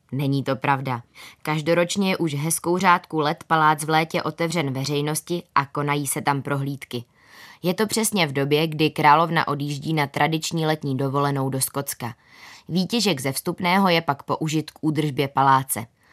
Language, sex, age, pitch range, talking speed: Czech, female, 20-39, 140-170 Hz, 155 wpm